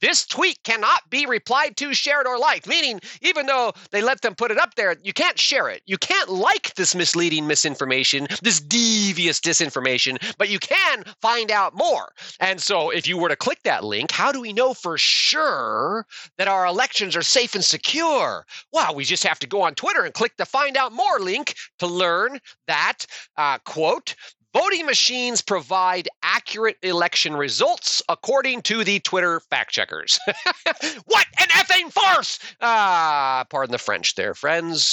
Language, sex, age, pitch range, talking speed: English, male, 30-49, 170-265 Hz, 175 wpm